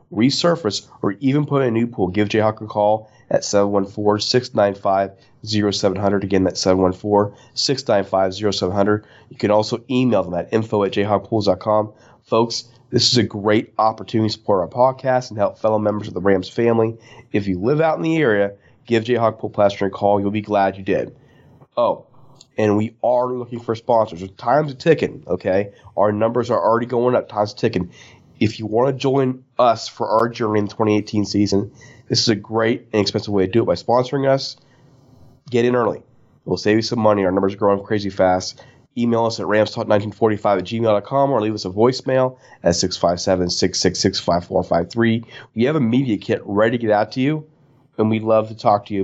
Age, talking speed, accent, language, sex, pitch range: 30-49, 185 wpm, American, English, male, 100-125 Hz